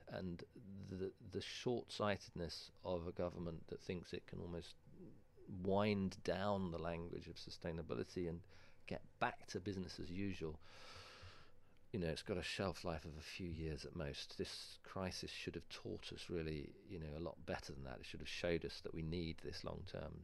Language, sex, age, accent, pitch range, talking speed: English, male, 40-59, British, 80-95 Hz, 185 wpm